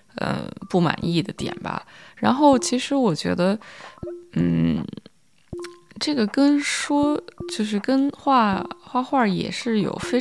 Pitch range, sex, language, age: 175-245 Hz, female, Chinese, 20-39